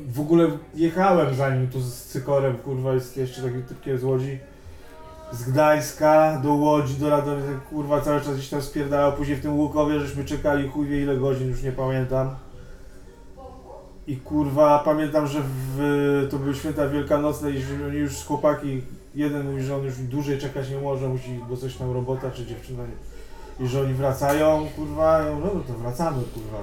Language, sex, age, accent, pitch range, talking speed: Polish, male, 20-39, native, 130-160 Hz, 185 wpm